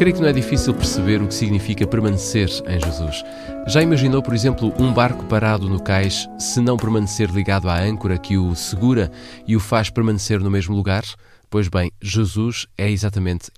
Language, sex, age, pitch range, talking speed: Portuguese, male, 20-39, 95-115 Hz, 185 wpm